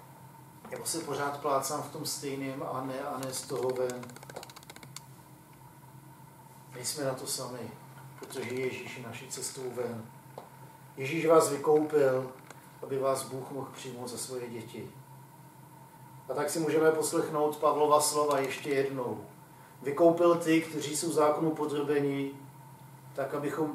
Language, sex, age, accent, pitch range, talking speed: Czech, male, 40-59, native, 135-150 Hz, 130 wpm